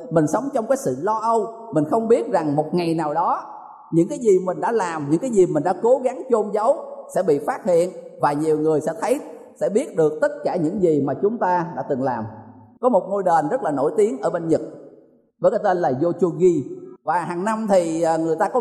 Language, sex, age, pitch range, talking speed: Vietnamese, male, 20-39, 155-230 Hz, 240 wpm